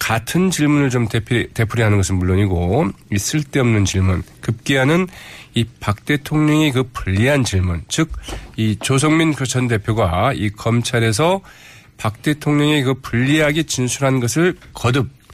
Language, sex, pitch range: Korean, male, 100-145 Hz